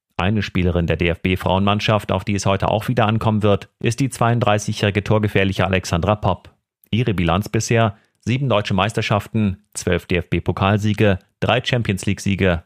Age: 40-59